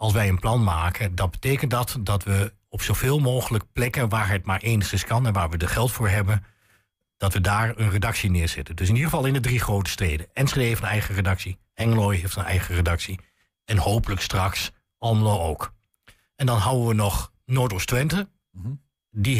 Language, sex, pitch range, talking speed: Dutch, male, 95-120 Hz, 200 wpm